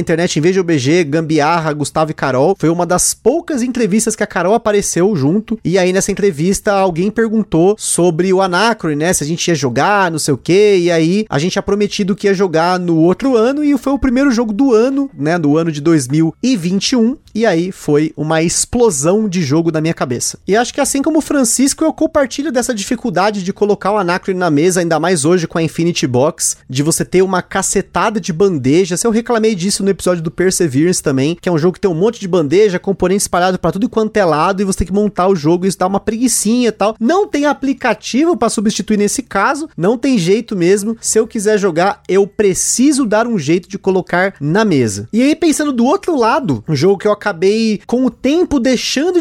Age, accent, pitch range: 30-49, Brazilian, 180-230 Hz